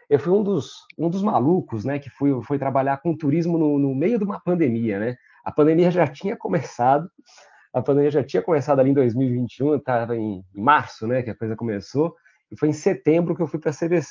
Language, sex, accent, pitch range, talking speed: Portuguese, male, Brazilian, 120-165 Hz, 215 wpm